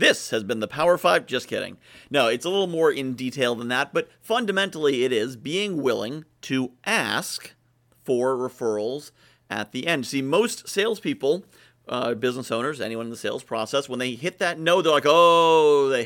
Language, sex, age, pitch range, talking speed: English, male, 40-59, 120-170 Hz, 185 wpm